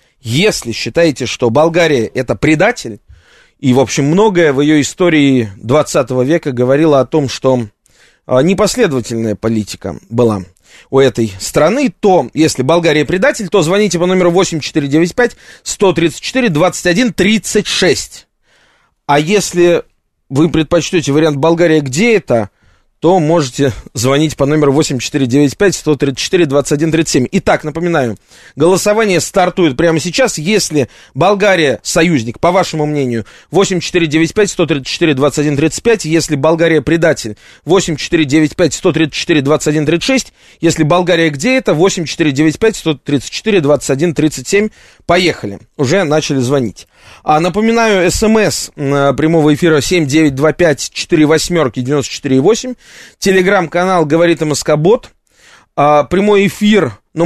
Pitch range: 140-175 Hz